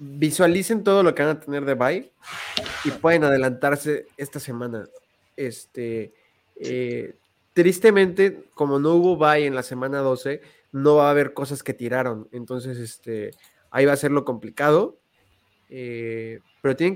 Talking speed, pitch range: 150 wpm, 120-145 Hz